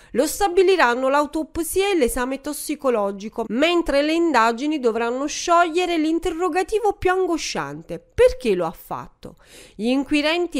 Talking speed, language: 115 wpm, Italian